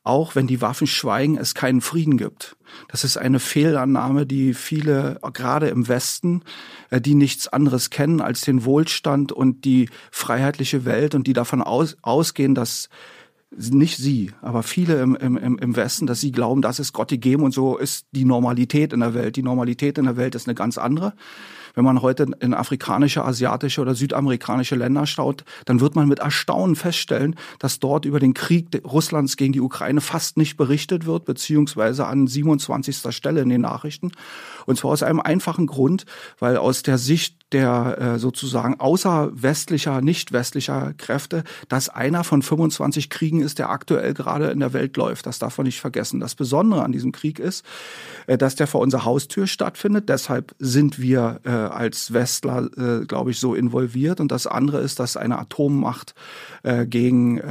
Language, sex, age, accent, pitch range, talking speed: German, male, 40-59, German, 125-150 Hz, 175 wpm